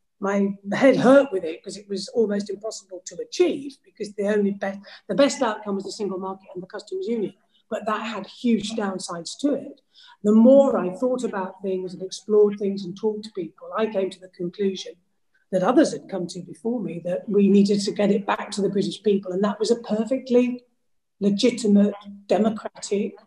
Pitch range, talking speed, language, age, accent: 195-260 Hz, 195 wpm, English, 40-59, British